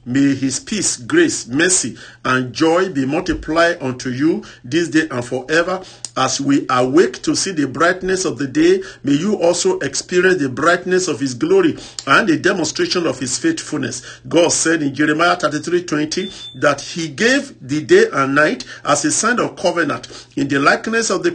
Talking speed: 175 wpm